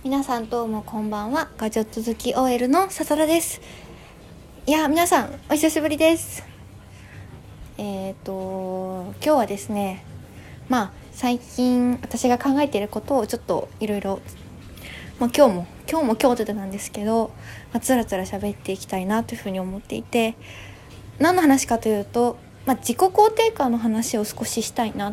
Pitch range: 190-275 Hz